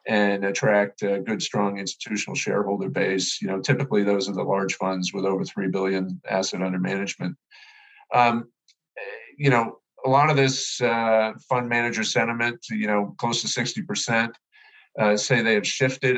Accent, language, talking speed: American, English, 165 wpm